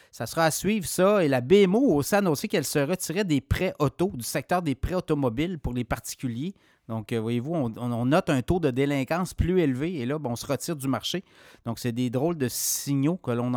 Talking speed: 230 wpm